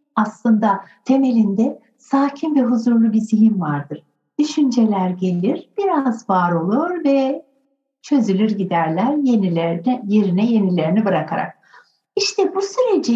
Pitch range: 215-290 Hz